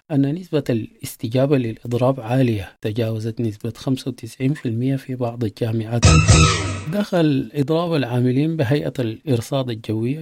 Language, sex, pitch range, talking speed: English, male, 115-135 Hz, 100 wpm